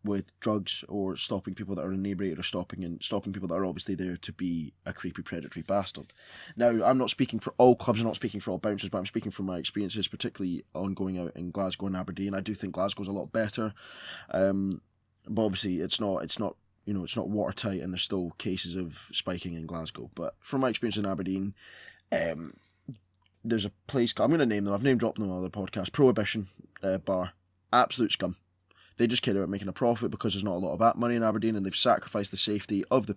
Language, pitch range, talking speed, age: English, 95-105 Hz, 230 wpm, 20-39